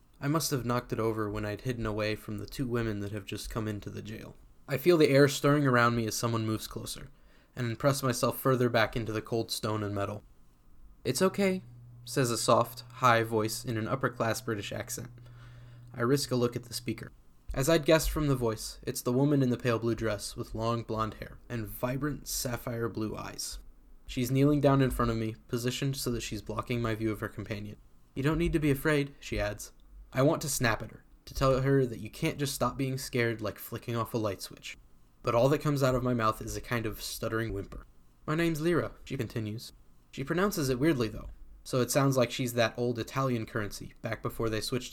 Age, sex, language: 10-29, male, English